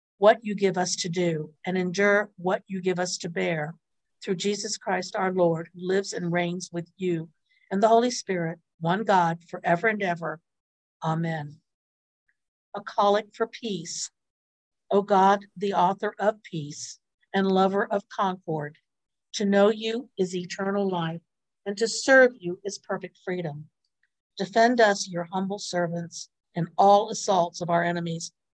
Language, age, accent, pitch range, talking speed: English, 50-69, American, 165-205 Hz, 155 wpm